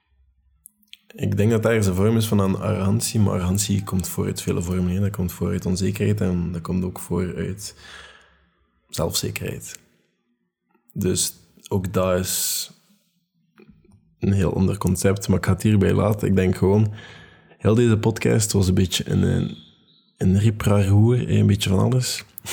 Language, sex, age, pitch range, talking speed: Dutch, male, 20-39, 90-105 Hz, 145 wpm